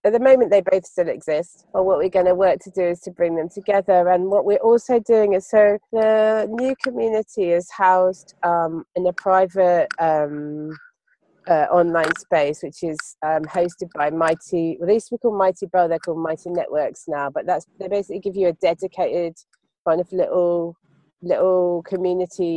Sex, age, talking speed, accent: female, 30-49, 185 wpm, British